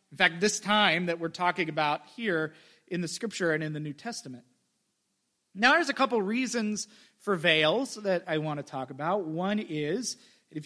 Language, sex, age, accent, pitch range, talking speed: English, male, 30-49, American, 160-215 Hz, 185 wpm